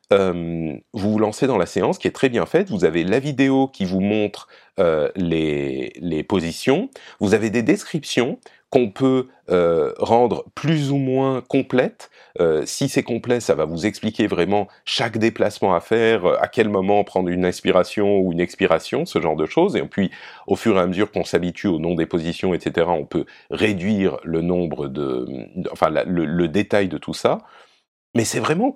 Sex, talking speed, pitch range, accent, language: male, 190 wpm, 90-130 Hz, French, French